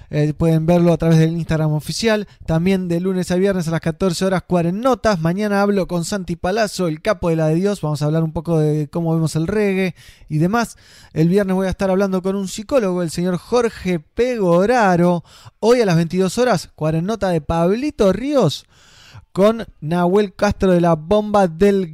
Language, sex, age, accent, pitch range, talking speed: Spanish, male, 20-39, Argentinian, 165-200 Hz, 195 wpm